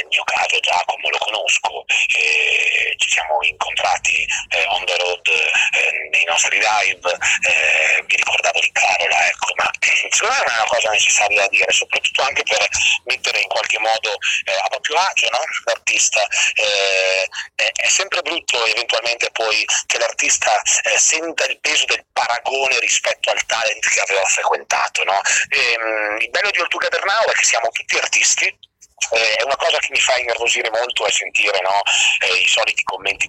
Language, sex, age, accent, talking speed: Italian, male, 30-49, native, 170 wpm